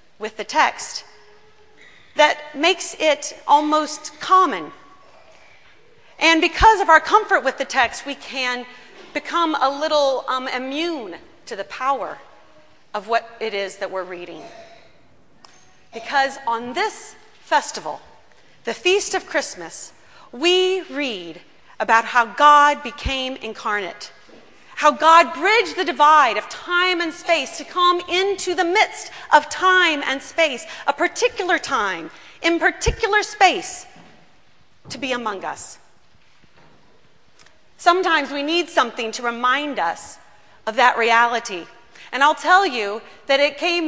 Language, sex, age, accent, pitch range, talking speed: English, female, 40-59, American, 240-340 Hz, 125 wpm